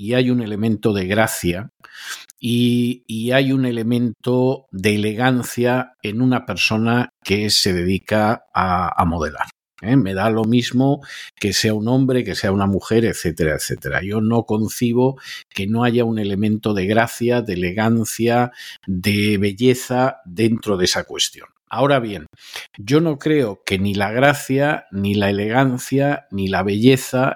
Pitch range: 100-130 Hz